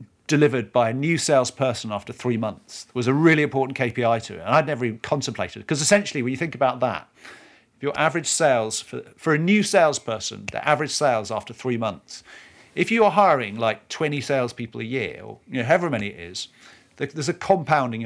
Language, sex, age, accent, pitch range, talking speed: English, male, 50-69, British, 115-155 Hz, 205 wpm